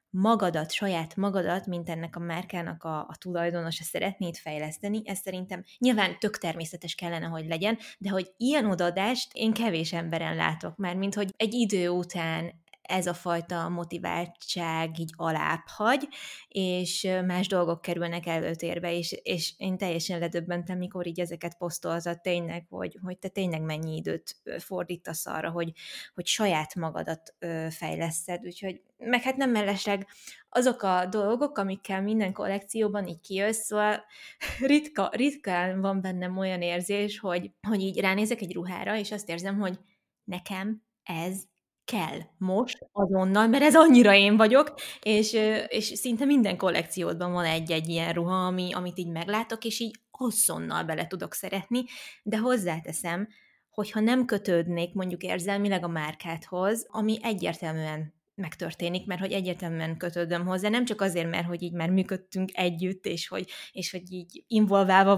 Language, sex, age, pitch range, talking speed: Hungarian, female, 20-39, 170-205 Hz, 145 wpm